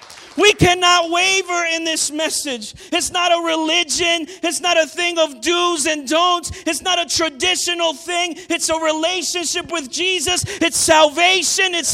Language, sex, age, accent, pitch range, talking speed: English, male, 40-59, American, 295-355 Hz, 155 wpm